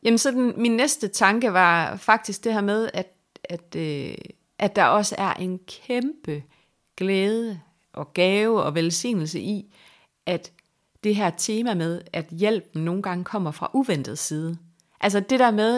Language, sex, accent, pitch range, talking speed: Danish, female, native, 165-210 Hz, 165 wpm